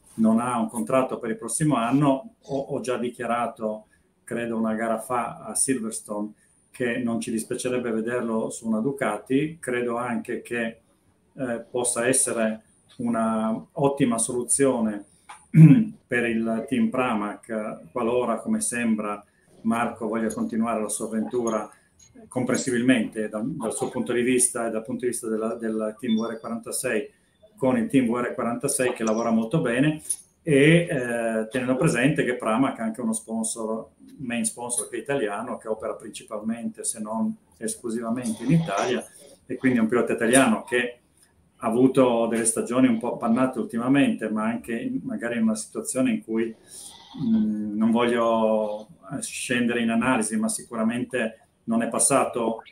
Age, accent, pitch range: 40-59, native, 110-135 Hz